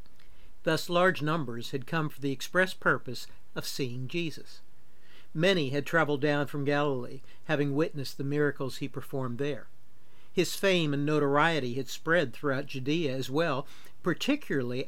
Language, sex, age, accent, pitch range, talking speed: English, male, 60-79, American, 130-170 Hz, 145 wpm